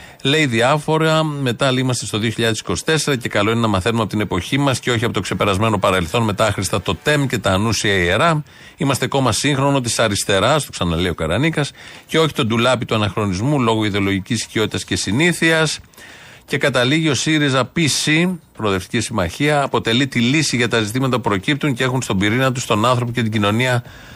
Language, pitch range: Greek, 110-135 Hz